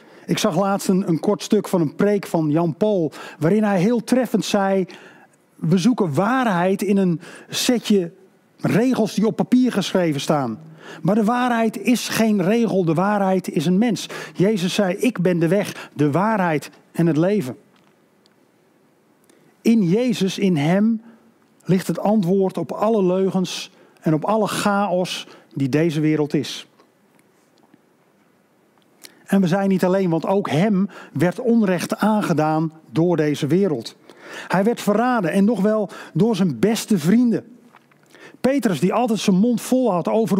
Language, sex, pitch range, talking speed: Dutch, male, 175-220 Hz, 150 wpm